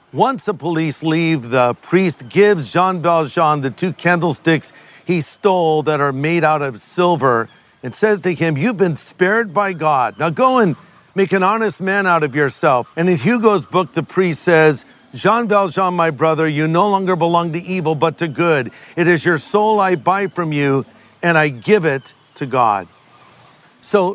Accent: American